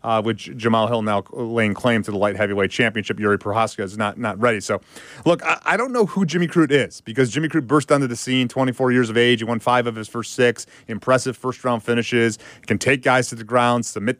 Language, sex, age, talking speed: English, male, 30-49, 240 wpm